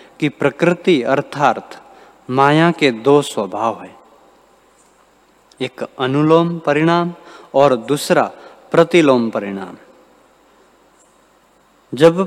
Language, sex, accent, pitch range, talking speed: Hindi, male, native, 130-165 Hz, 80 wpm